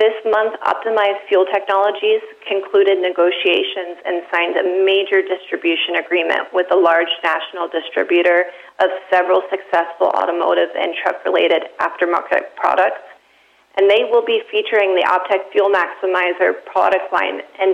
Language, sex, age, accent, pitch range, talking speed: English, female, 30-49, American, 180-205 Hz, 130 wpm